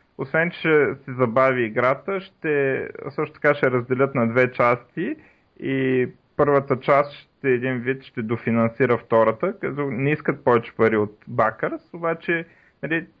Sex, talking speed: male, 130 wpm